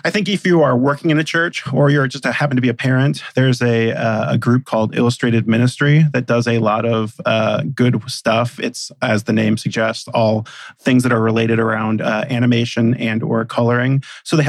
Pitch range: 115-135 Hz